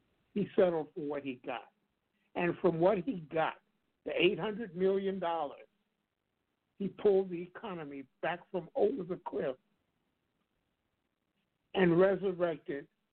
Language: English